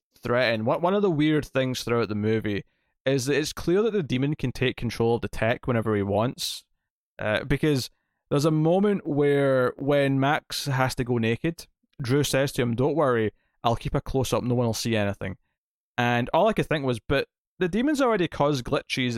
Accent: British